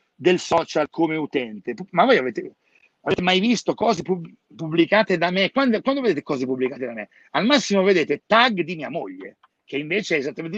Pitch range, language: 150-210 Hz, Italian